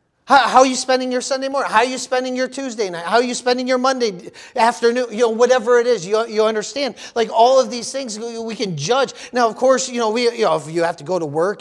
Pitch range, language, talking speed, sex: 195-255 Hz, English, 270 wpm, male